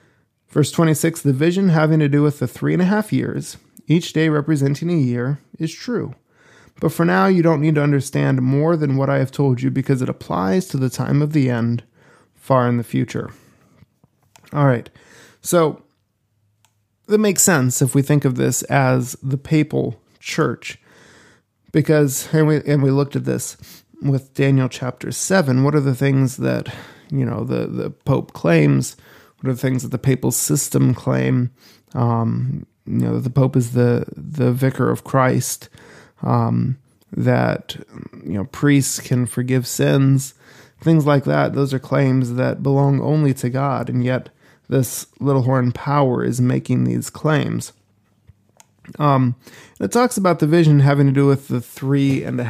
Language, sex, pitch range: English, male, 120-150 Hz